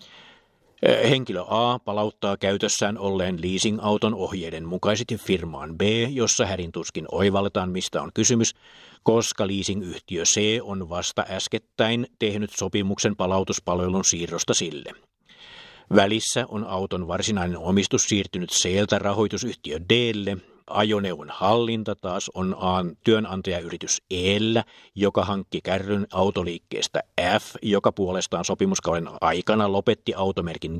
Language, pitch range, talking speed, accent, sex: Finnish, 95-110 Hz, 105 wpm, native, male